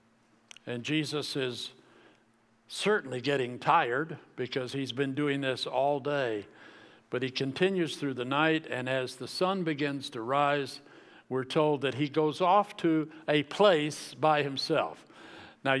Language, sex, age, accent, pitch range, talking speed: English, male, 60-79, American, 130-160 Hz, 145 wpm